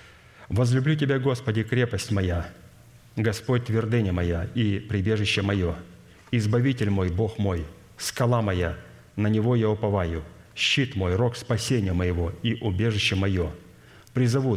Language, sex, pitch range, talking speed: Russian, male, 95-115 Hz, 125 wpm